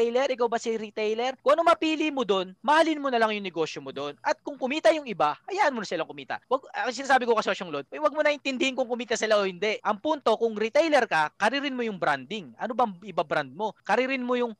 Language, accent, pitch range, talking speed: Filipino, native, 200-265 Hz, 245 wpm